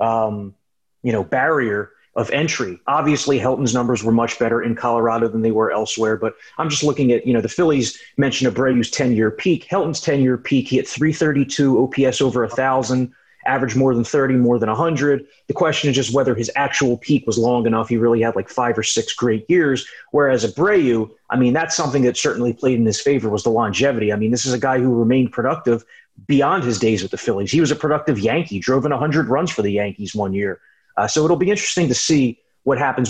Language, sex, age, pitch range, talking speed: English, male, 30-49, 115-145 Hz, 220 wpm